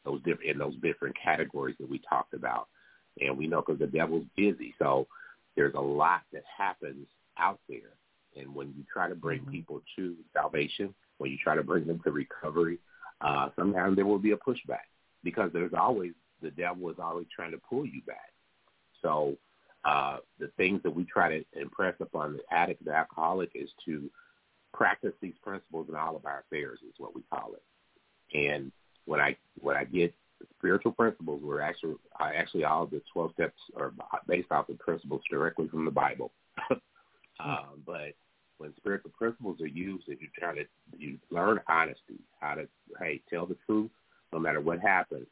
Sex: male